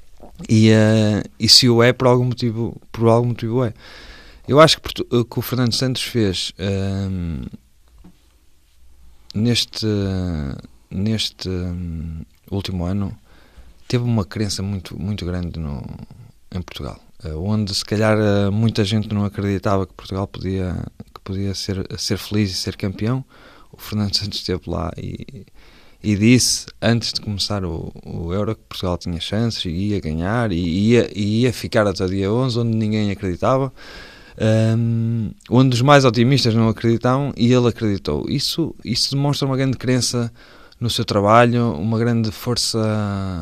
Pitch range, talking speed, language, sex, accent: 95-115 Hz, 140 wpm, Portuguese, male, Portuguese